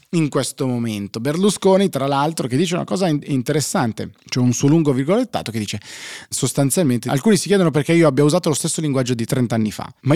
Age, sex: 30-49, male